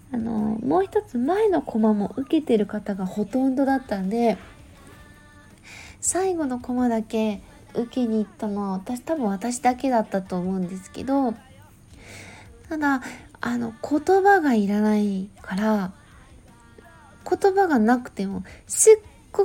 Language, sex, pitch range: Japanese, female, 205-295 Hz